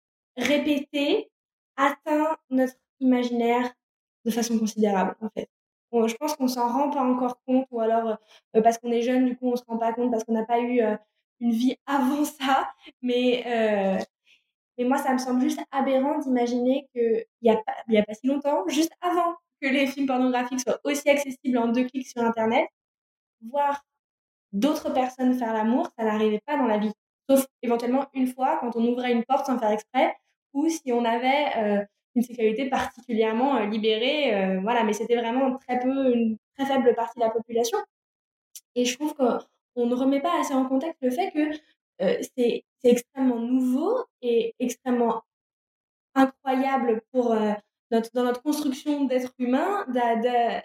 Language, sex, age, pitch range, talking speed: French, female, 20-39, 235-275 Hz, 180 wpm